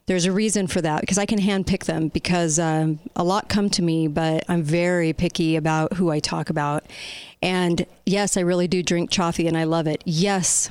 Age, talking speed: 40-59, 215 wpm